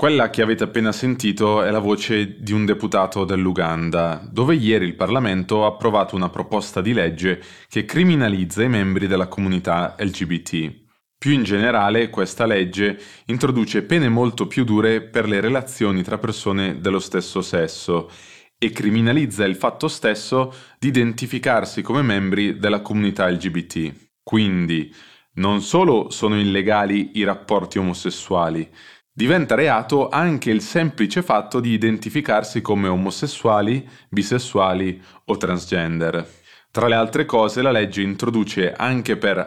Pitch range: 95-120 Hz